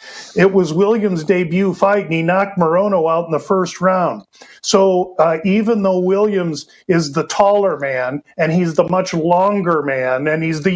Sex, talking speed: male, 180 wpm